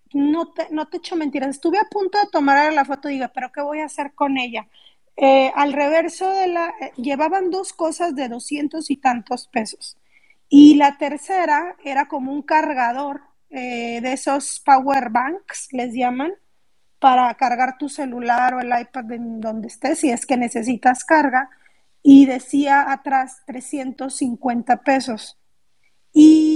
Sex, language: female, Spanish